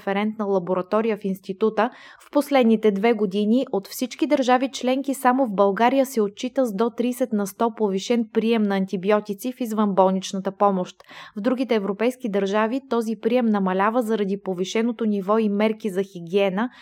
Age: 20-39